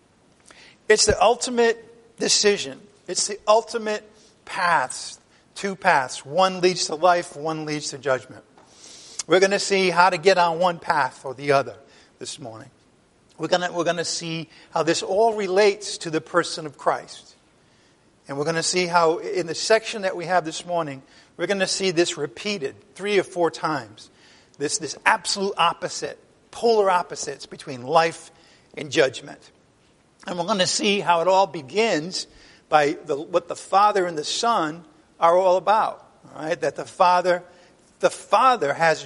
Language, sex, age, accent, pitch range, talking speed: English, male, 50-69, American, 150-195 Hz, 170 wpm